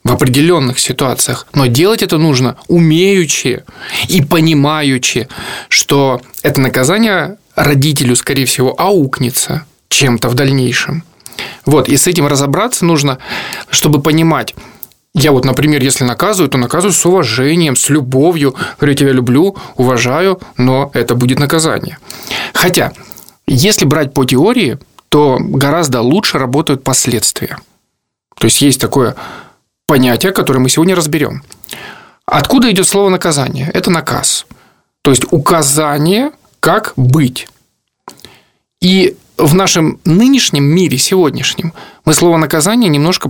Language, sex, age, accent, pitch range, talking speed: Russian, male, 20-39, native, 135-170 Hz, 120 wpm